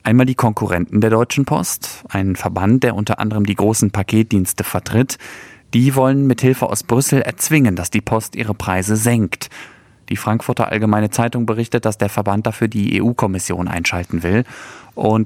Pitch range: 105-125 Hz